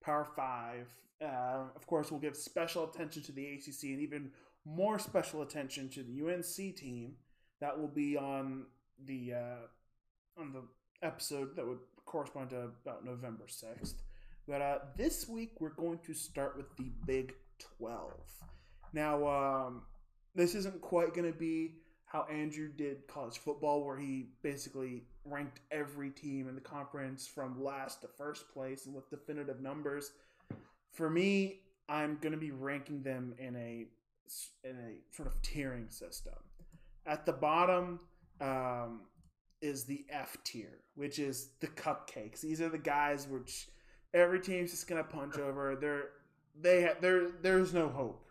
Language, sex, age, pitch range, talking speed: English, male, 20-39, 130-155 Hz, 160 wpm